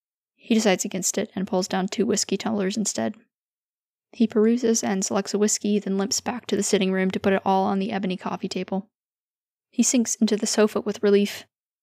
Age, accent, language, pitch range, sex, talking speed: 10-29, American, English, 195-215 Hz, female, 205 wpm